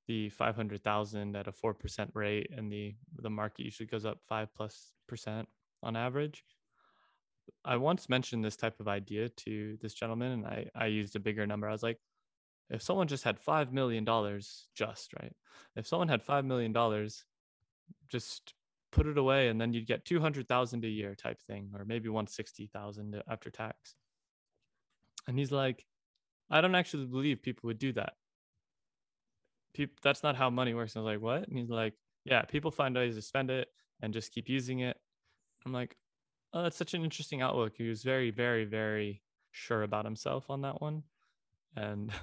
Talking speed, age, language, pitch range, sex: 175 wpm, 20-39, English, 105-130 Hz, male